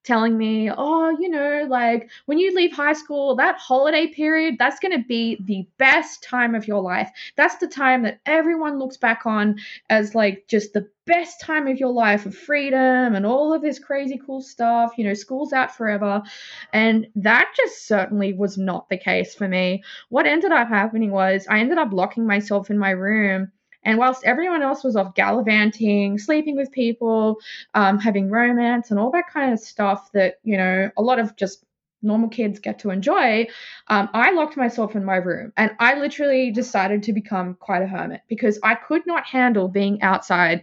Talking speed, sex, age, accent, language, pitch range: 195 wpm, female, 10-29, Australian, English, 200-260 Hz